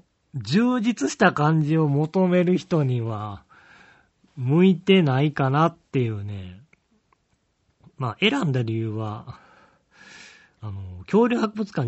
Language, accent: Japanese, native